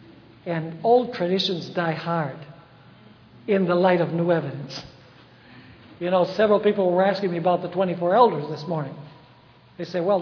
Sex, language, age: male, English, 60-79